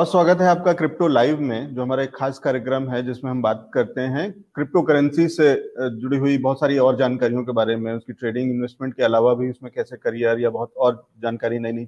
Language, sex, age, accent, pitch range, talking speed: English, male, 30-49, Indian, 120-150 Hz, 215 wpm